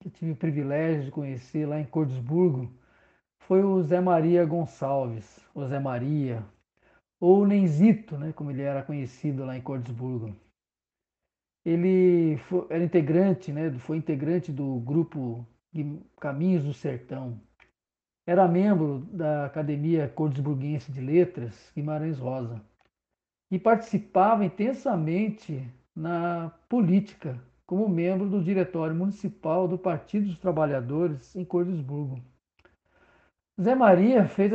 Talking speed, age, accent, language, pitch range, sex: 115 wpm, 50-69, Brazilian, Portuguese, 140-180 Hz, male